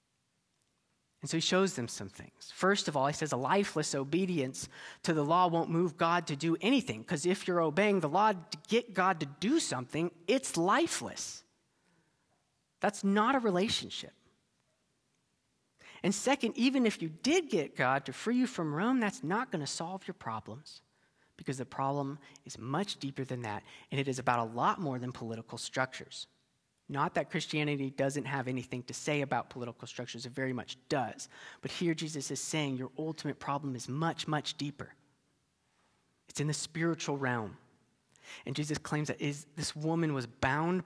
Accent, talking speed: American, 175 wpm